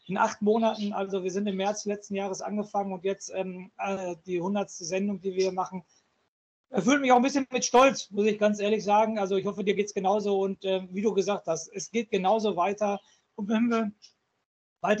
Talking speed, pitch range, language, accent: 215 wpm, 185-215 Hz, German, German